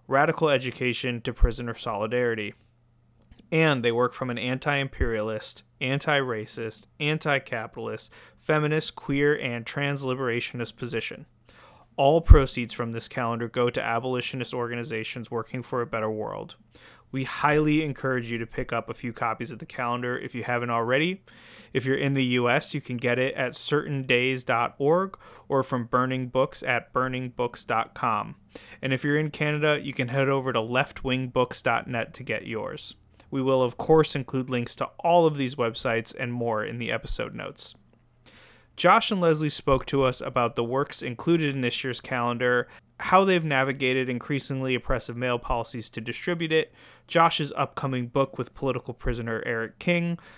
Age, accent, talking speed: 30-49, American, 155 wpm